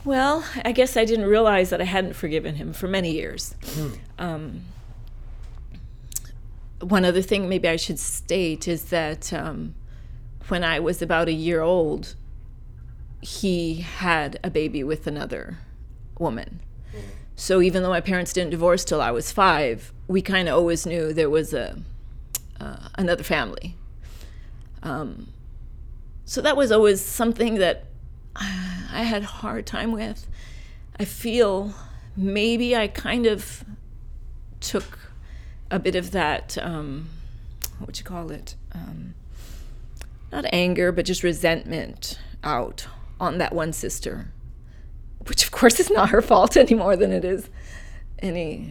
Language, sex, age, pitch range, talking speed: English, female, 30-49, 150-195 Hz, 140 wpm